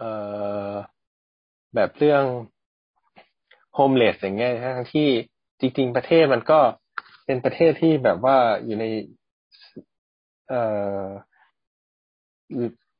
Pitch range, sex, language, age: 100-130 Hz, male, Thai, 20-39